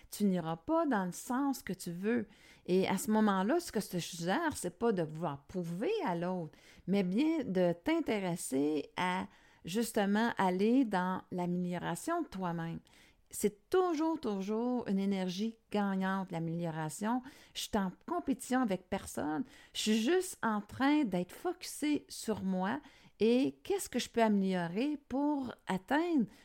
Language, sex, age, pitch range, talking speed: French, female, 50-69, 185-260 Hz, 150 wpm